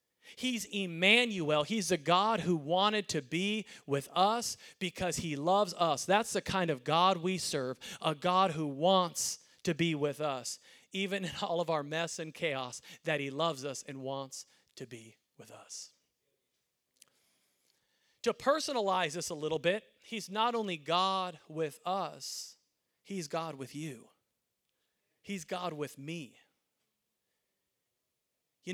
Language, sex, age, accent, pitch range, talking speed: English, male, 40-59, American, 150-185 Hz, 145 wpm